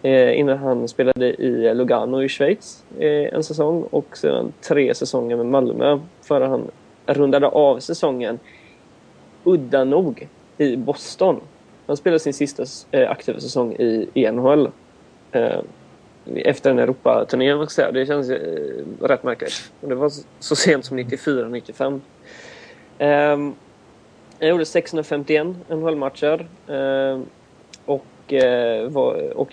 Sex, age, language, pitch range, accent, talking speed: male, 30-49, Swedish, 130-150 Hz, native, 105 wpm